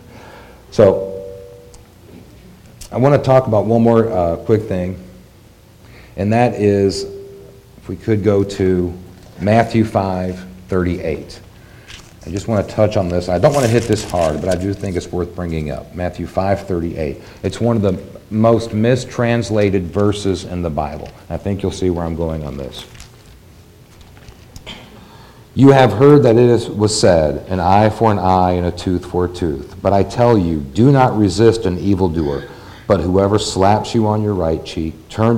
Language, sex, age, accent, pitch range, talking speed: English, male, 50-69, American, 90-110 Hz, 170 wpm